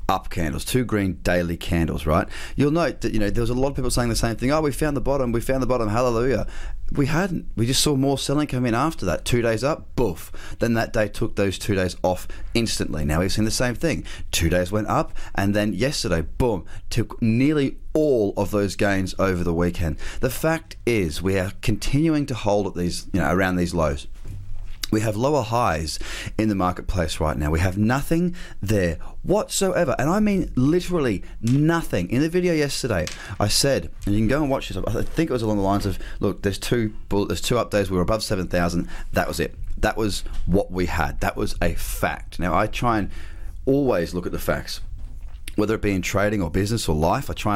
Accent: Australian